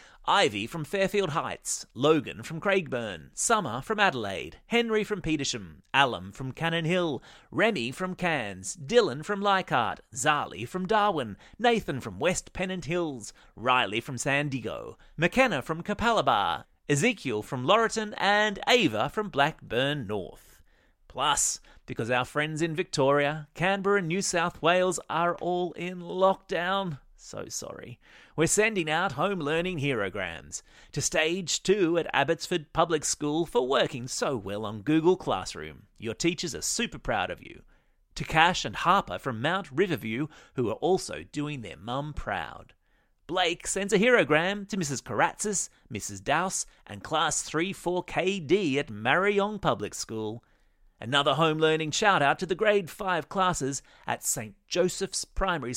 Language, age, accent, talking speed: English, 30-49, Australian, 145 wpm